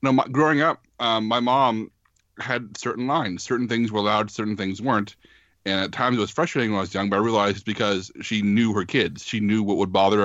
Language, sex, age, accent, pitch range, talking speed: English, male, 30-49, American, 100-120 Hz, 235 wpm